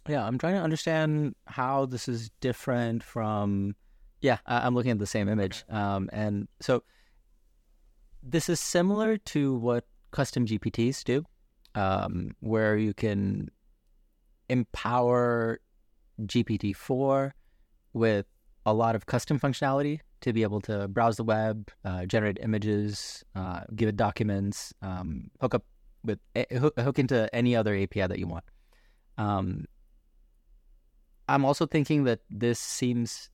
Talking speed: 135 wpm